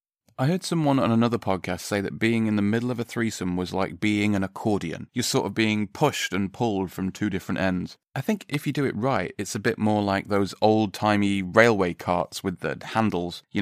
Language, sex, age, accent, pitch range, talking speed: English, male, 30-49, British, 95-115 Hz, 225 wpm